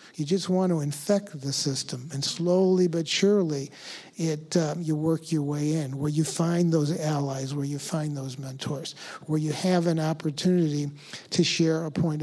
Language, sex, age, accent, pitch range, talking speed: English, male, 50-69, American, 155-185 Hz, 180 wpm